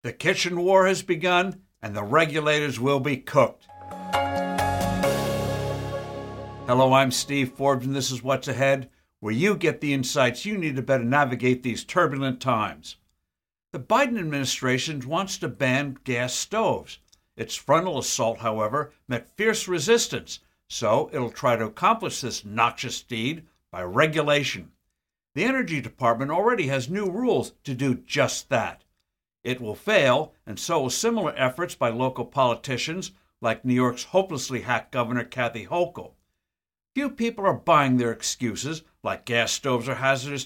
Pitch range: 125-165 Hz